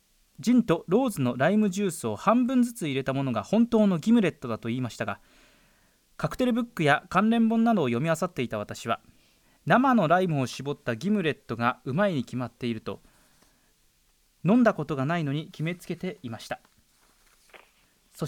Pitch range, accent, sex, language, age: 125-200 Hz, native, male, Japanese, 20-39